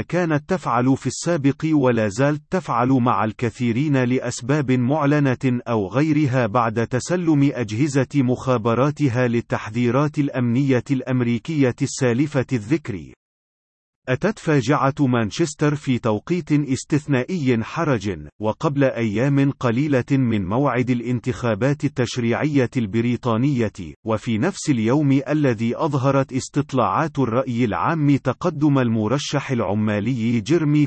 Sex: male